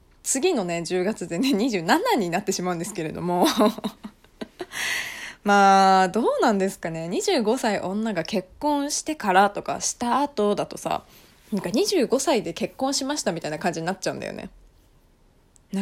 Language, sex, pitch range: Japanese, female, 180-285 Hz